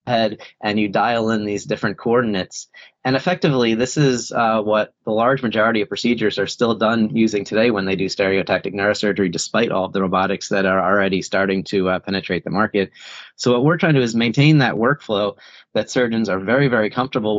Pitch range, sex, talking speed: 95-110 Hz, male, 205 wpm